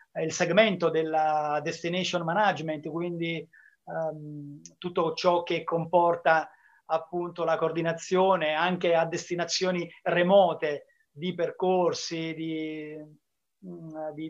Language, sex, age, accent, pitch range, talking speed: Italian, male, 30-49, native, 165-190 Hz, 90 wpm